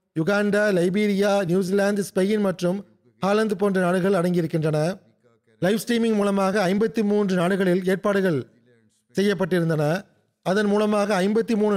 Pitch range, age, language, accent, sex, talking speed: 175-210 Hz, 30-49, Tamil, native, male, 105 wpm